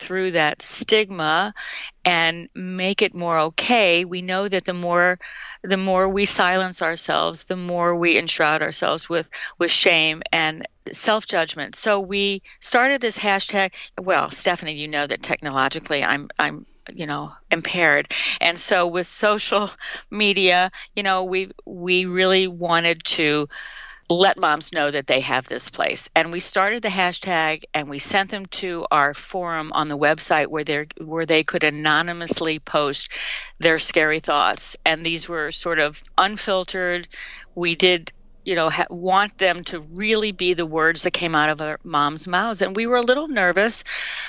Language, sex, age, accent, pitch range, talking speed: English, female, 50-69, American, 160-195 Hz, 165 wpm